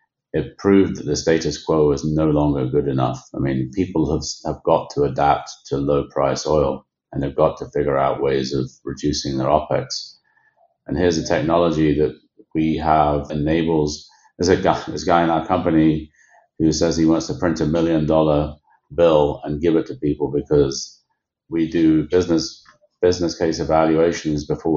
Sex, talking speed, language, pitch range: male, 170 wpm, English, 75-80 Hz